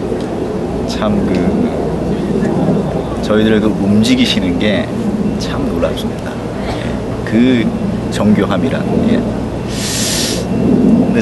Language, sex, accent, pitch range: Korean, male, native, 85-110 Hz